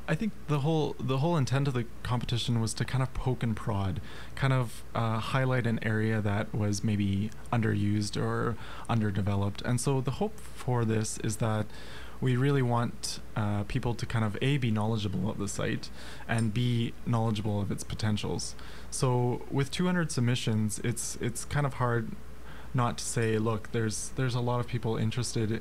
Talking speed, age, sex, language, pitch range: 180 wpm, 20-39, male, English, 105-130 Hz